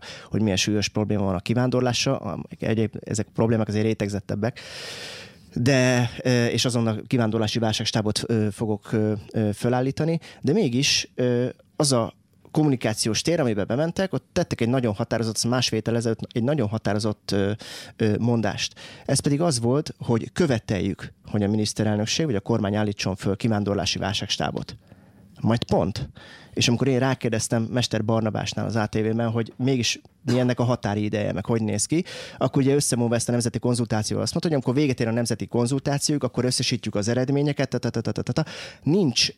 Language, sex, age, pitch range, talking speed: Hungarian, male, 30-49, 110-125 Hz, 145 wpm